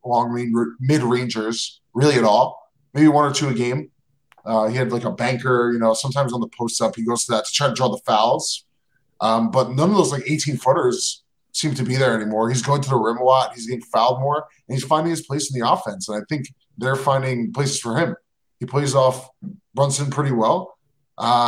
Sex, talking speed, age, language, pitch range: male, 235 wpm, 20-39, English, 120-160 Hz